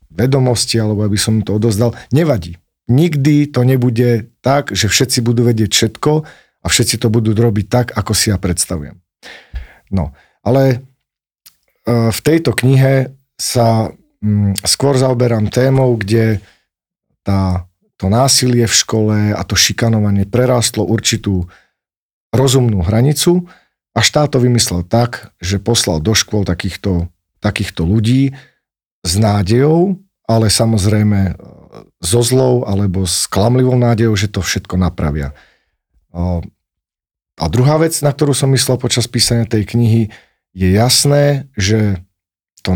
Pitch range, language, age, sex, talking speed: 100-130 Hz, Slovak, 40-59, male, 125 wpm